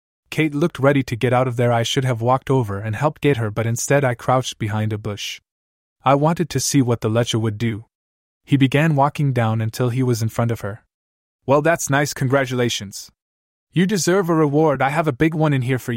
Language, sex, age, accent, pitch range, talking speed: English, male, 20-39, American, 110-155 Hz, 225 wpm